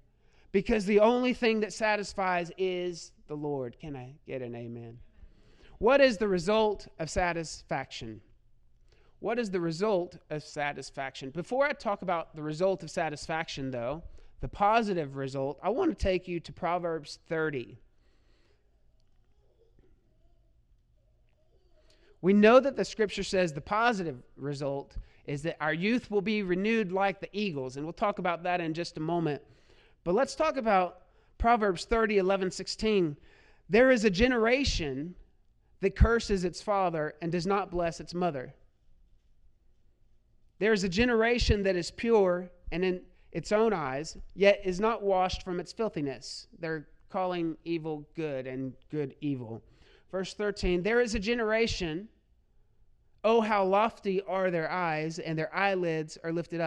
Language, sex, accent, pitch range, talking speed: English, male, American, 150-205 Hz, 145 wpm